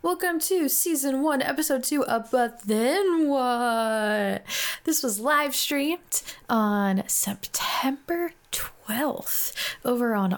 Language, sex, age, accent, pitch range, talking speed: English, female, 20-39, American, 195-265 Hz, 110 wpm